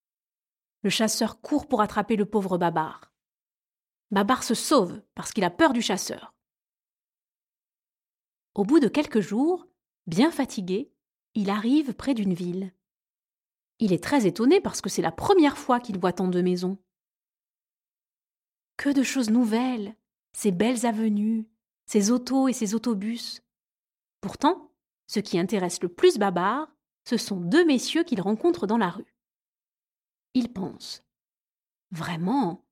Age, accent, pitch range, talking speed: 30-49, French, 200-275 Hz, 140 wpm